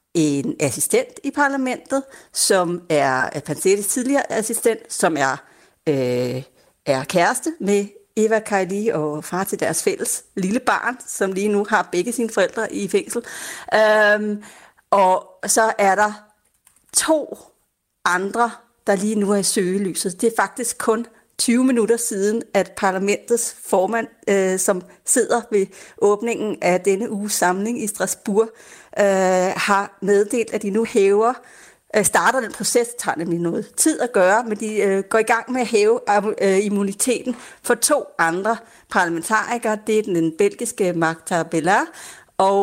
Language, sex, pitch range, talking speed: Danish, female, 180-230 Hz, 150 wpm